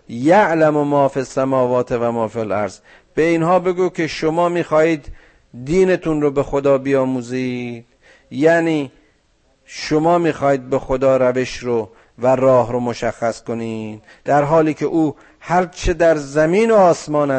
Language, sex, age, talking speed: Persian, male, 50-69, 135 wpm